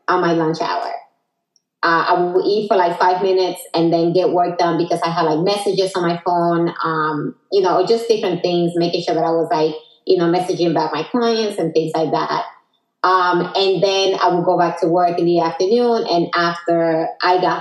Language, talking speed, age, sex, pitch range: English, 215 wpm, 20-39, female, 170-185 Hz